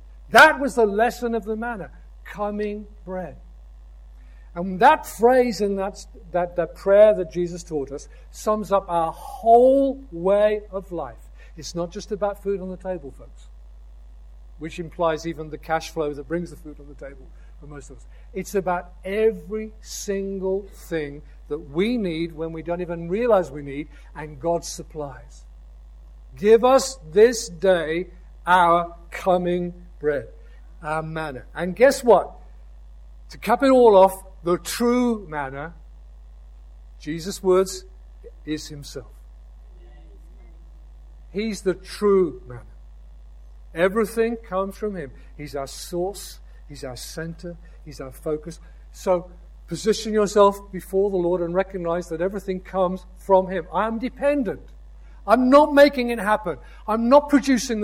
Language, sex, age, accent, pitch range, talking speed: English, male, 50-69, British, 145-205 Hz, 140 wpm